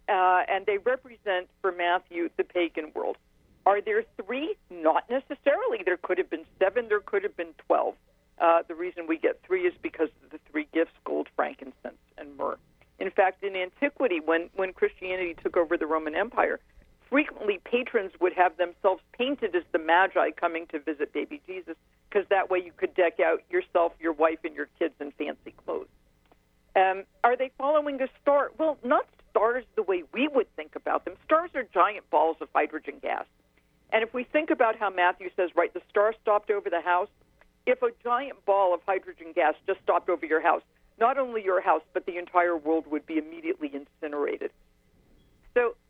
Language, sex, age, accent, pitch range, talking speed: English, female, 50-69, American, 170-260 Hz, 190 wpm